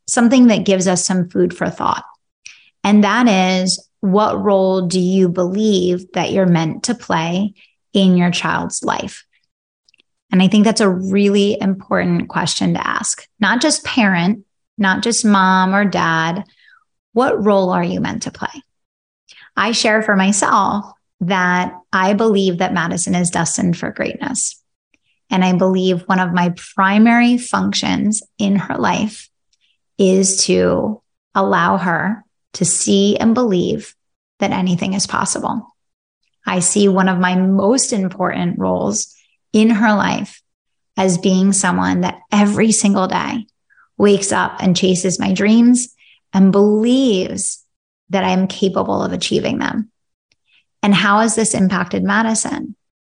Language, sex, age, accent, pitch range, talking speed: English, female, 30-49, American, 185-215 Hz, 140 wpm